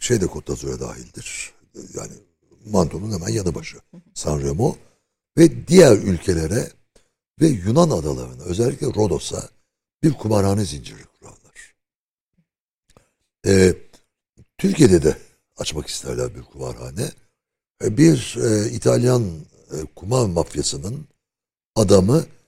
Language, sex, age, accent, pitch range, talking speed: Turkish, male, 60-79, native, 90-125 Hz, 95 wpm